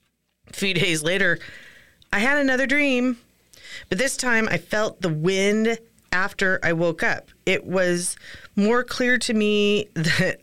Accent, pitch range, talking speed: American, 170-215 Hz, 150 wpm